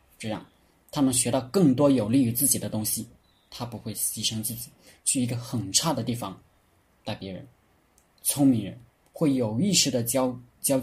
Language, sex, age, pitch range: Chinese, male, 20-39, 105-130 Hz